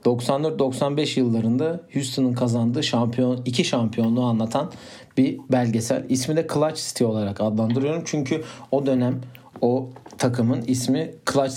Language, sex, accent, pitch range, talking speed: Turkish, male, native, 115-140 Hz, 120 wpm